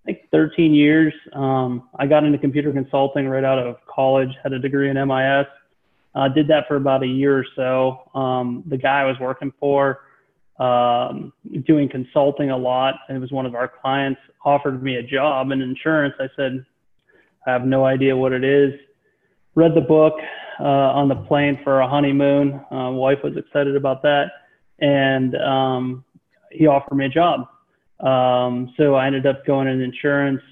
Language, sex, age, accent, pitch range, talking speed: English, male, 30-49, American, 130-140 Hz, 185 wpm